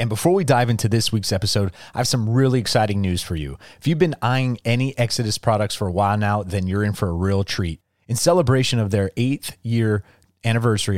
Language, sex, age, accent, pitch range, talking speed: English, male, 30-49, American, 95-120 Hz, 225 wpm